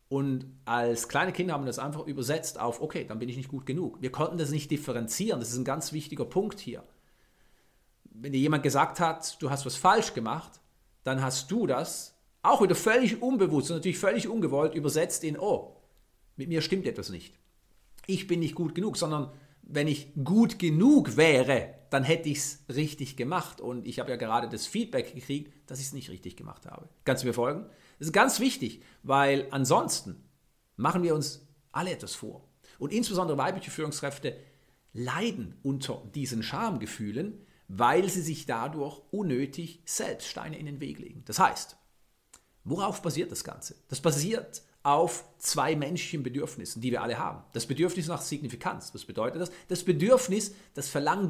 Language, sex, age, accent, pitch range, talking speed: German, male, 40-59, German, 135-180 Hz, 180 wpm